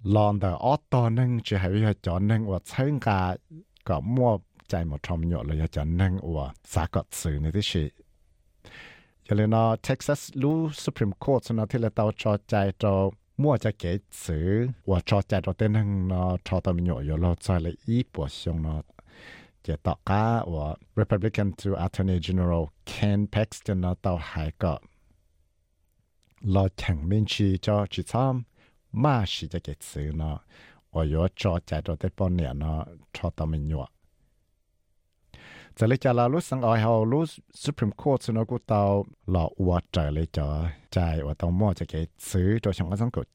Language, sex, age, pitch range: English, male, 60-79, 85-110 Hz